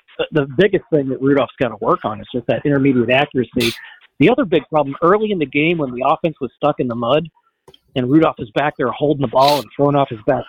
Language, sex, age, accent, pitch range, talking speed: English, male, 40-59, American, 130-155 Hz, 245 wpm